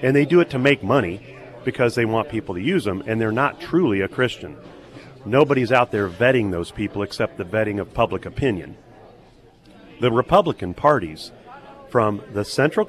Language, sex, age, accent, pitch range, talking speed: English, male, 40-59, American, 110-145 Hz, 175 wpm